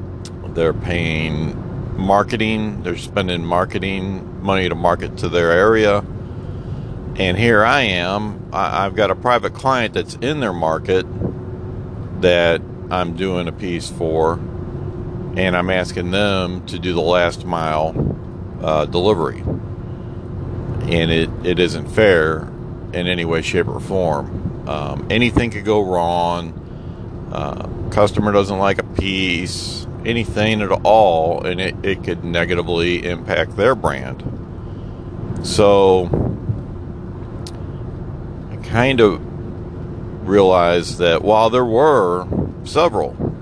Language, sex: English, male